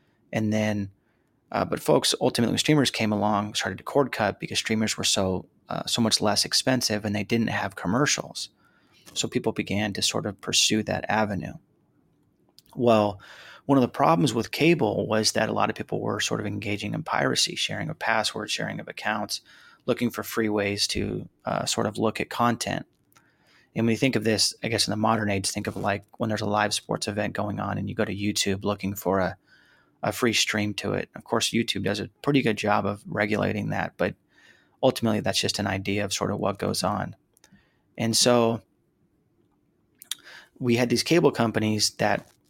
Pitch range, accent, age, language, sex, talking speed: 100-115 Hz, American, 30-49, English, male, 195 wpm